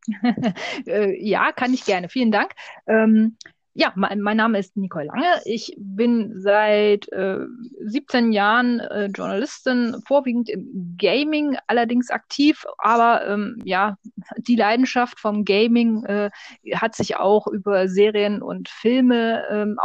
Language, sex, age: German, female, 20-39